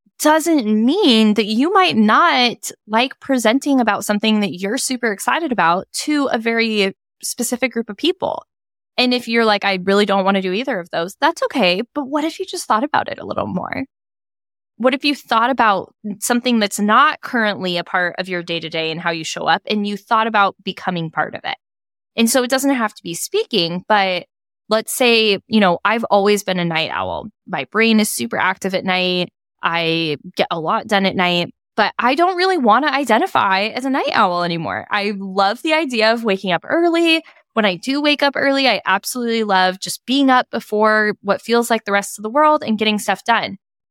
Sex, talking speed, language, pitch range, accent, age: female, 210 wpm, English, 185-250 Hz, American, 10-29